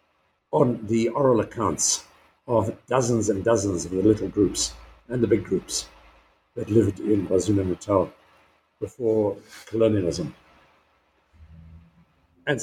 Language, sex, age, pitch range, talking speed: English, male, 60-79, 80-120 Hz, 115 wpm